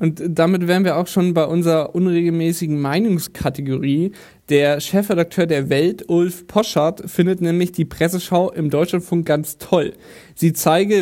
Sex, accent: male, German